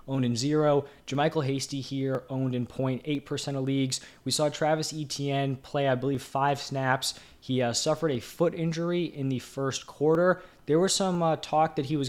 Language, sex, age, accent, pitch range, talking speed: English, male, 20-39, American, 125-150 Hz, 195 wpm